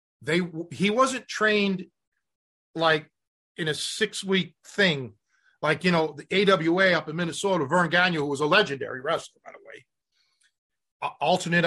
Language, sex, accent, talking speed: English, male, American, 145 wpm